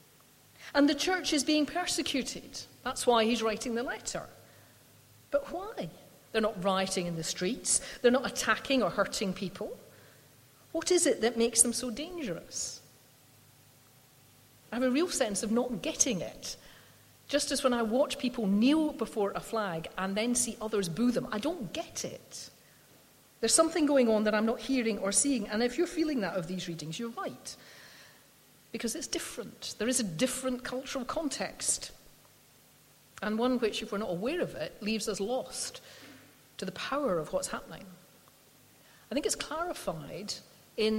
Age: 40-59